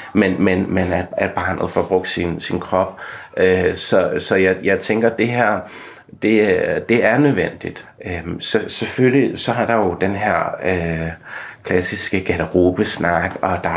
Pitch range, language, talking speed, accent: 90-110 Hz, Danish, 155 wpm, native